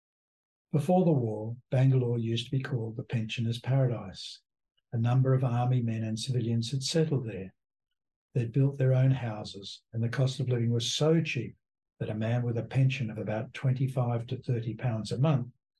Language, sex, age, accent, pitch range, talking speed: English, male, 60-79, Australian, 115-135 Hz, 180 wpm